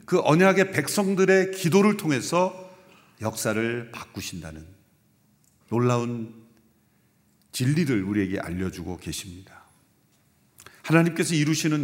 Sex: male